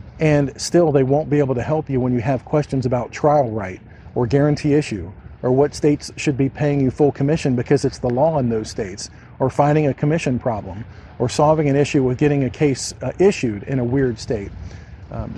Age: 50-69